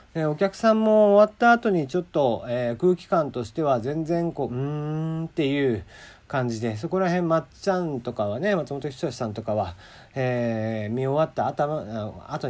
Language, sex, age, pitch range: Japanese, male, 40-59, 115-175 Hz